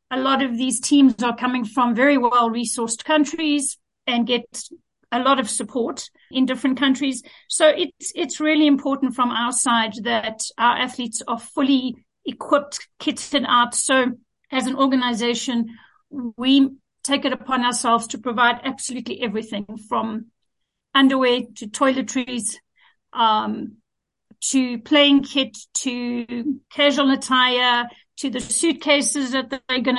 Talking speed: 135 wpm